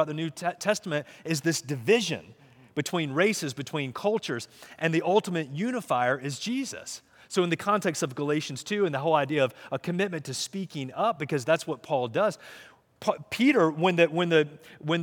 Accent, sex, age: American, male, 30-49